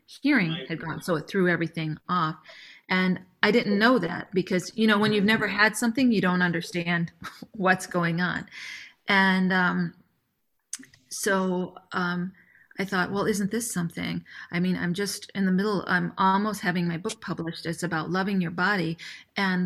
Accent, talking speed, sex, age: American, 170 wpm, female, 30-49